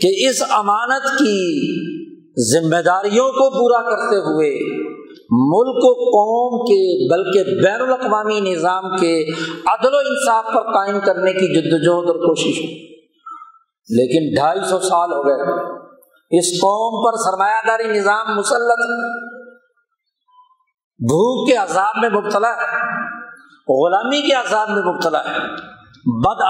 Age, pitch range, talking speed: 50-69, 180-255 Hz, 125 wpm